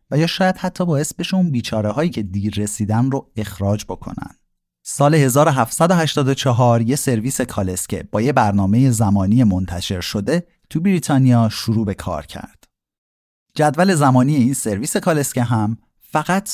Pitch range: 105-145 Hz